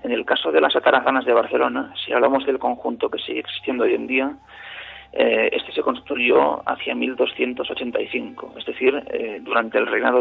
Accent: Spanish